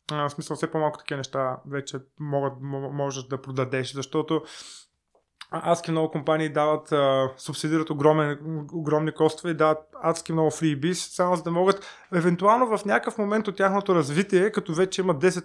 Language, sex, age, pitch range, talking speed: Bulgarian, male, 20-39, 140-170 Hz, 155 wpm